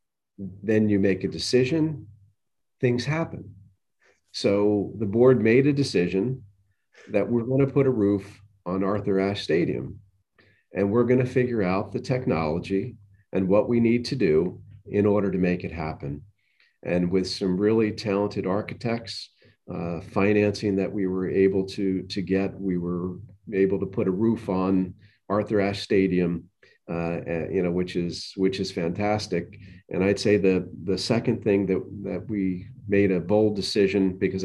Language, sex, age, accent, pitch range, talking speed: English, male, 40-59, American, 95-105 Hz, 160 wpm